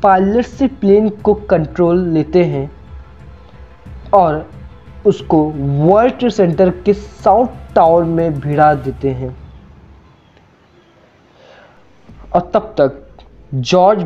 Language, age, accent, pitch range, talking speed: Hindi, 20-39, native, 155-195 Hz, 95 wpm